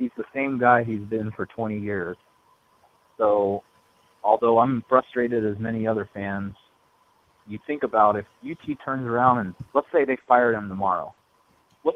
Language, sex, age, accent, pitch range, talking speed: English, male, 30-49, American, 105-135 Hz, 160 wpm